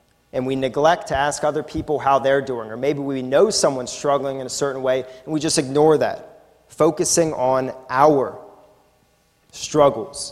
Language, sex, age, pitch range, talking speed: English, male, 30-49, 130-160 Hz, 170 wpm